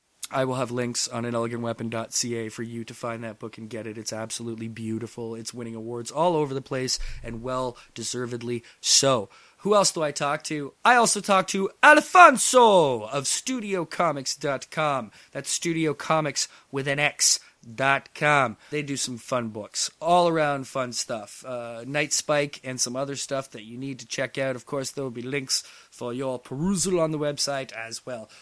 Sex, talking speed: male, 180 wpm